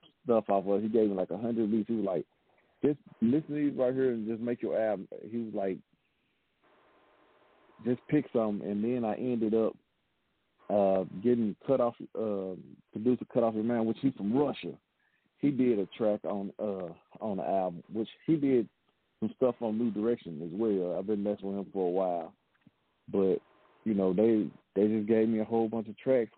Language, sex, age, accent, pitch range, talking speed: English, male, 40-59, American, 105-120 Hz, 200 wpm